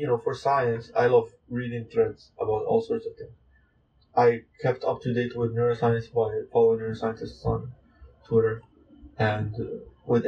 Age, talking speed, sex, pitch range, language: 20-39, 160 wpm, male, 110-120 Hz, English